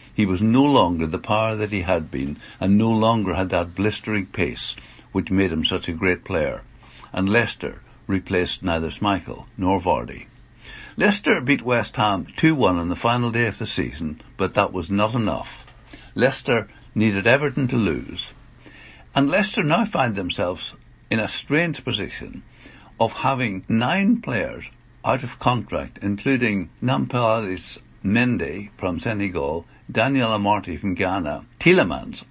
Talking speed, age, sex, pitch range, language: 145 wpm, 60-79, male, 95-125 Hz, English